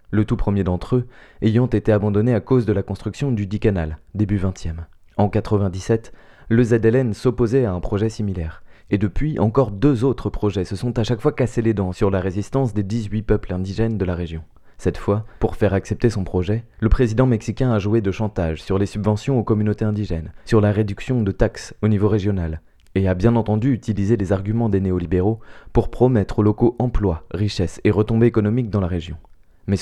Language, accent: French, French